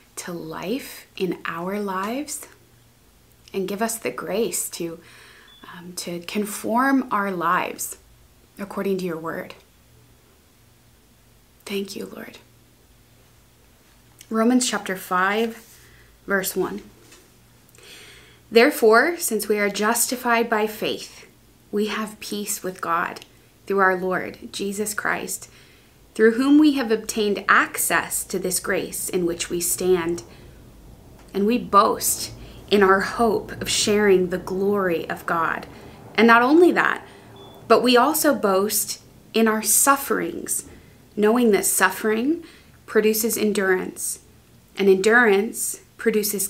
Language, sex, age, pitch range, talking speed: English, female, 20-39, 190-225 Hz, 115 wpm